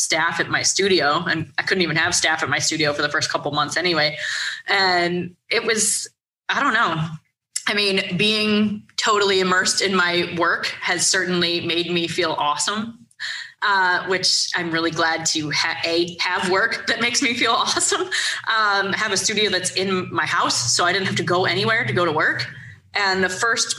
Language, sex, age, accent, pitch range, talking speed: English, female, 20-39, American, 175-210 Hz, 190 wpm